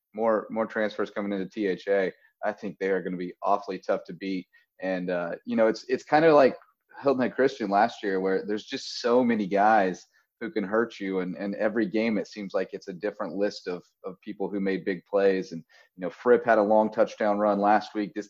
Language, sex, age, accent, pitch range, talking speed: English, male, 30-49, American, 95-110 Hz, 230 wpm